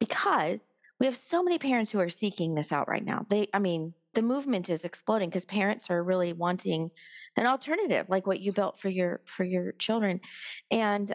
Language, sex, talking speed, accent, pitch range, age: English, female, 200 wpm, American, 175-220 Hz, 40-59